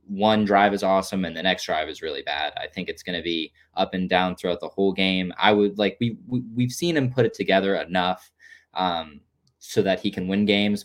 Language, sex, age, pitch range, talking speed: English, male, 20-39, 90-100 Hz, 240 wpm